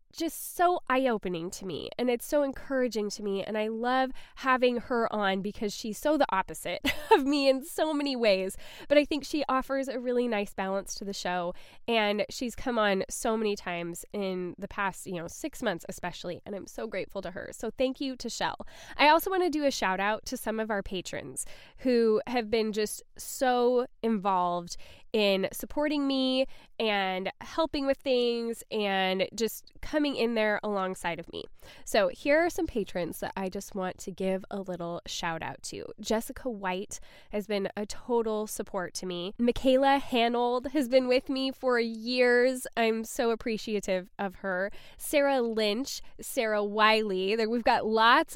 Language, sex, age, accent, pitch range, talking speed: English, female, 10-29, American, 200-265 Hz, 180 wpm